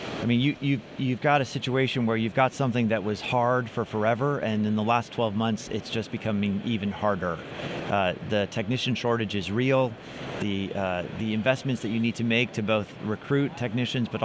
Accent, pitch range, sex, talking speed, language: American, 110-130 Hz, male, 190 wpm, English